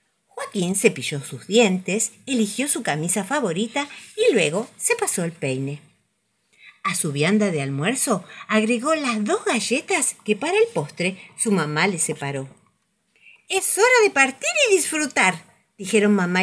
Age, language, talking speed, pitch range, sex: 50-69, Spanish, 140 wpm, 180-285 Hz, female